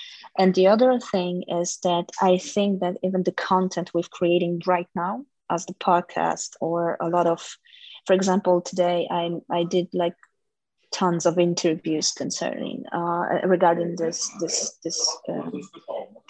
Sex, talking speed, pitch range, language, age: female, 145 wpm, 170-195 Hz, English, 20-39